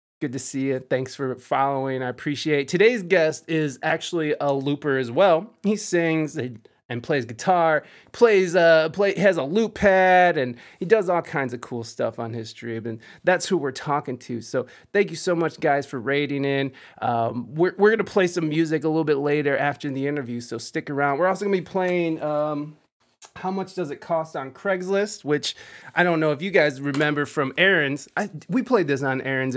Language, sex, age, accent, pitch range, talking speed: English, male, 20-39, American, 130-175 Hz, 205 wpm